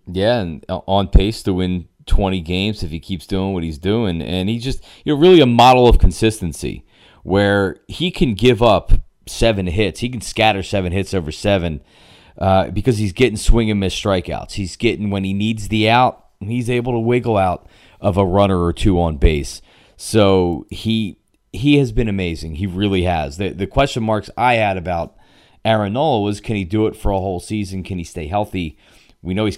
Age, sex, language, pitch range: 30-49, male, English, 95-125 Hz